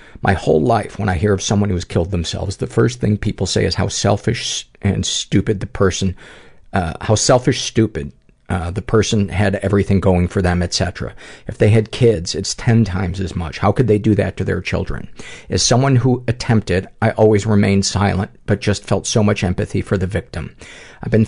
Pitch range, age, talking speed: 95-115 Hz, 50-69, 205 wpm